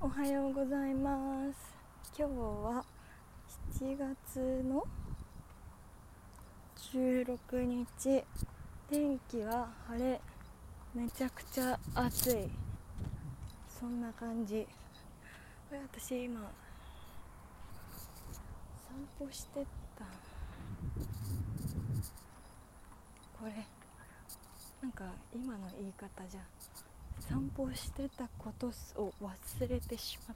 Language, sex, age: Japanese, female, 20-39